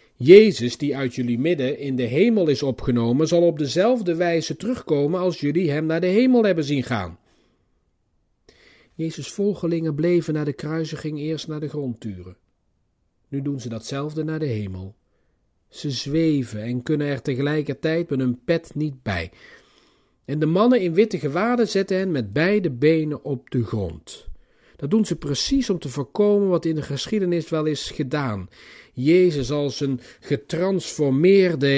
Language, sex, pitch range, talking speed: Dutch, male, 125-165 Hz, 160 wpm